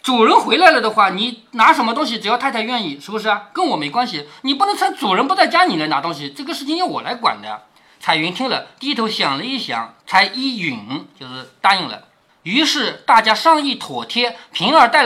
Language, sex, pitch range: Chinese, male, 180-275 Hz